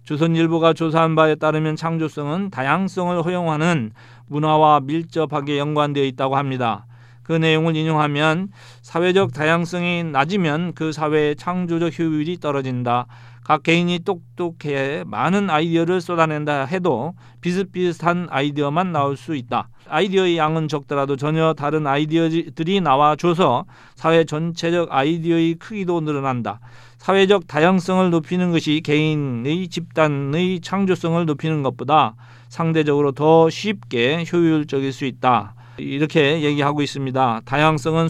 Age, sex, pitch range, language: 40-59, male, 140-175 Hz, Korean